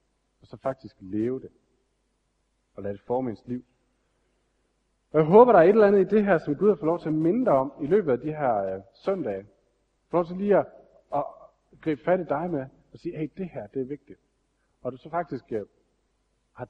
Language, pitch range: Danish, 115-160 Hz